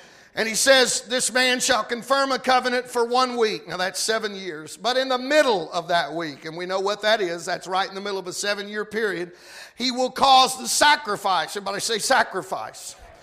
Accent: American